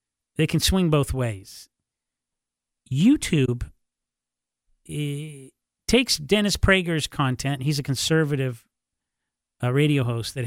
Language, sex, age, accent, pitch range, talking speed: English, male, 40-59, American, 120-150 Hz, 105 wpm